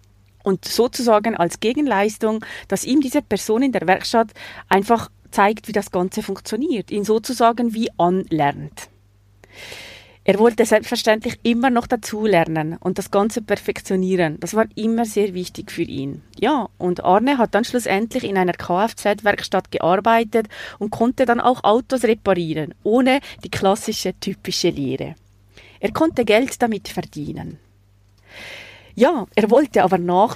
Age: 30-49